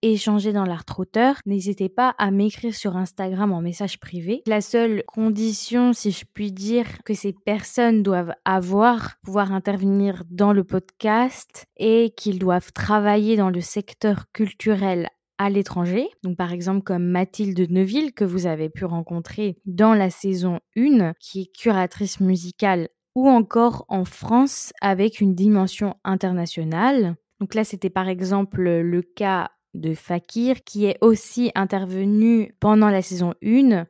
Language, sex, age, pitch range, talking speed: French, female, 20-39, 185-220 Hz, 145 wpm